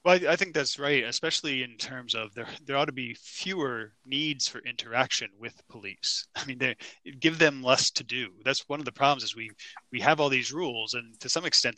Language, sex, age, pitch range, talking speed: English, male, 20-39, 115-140 Hz, 230 wpm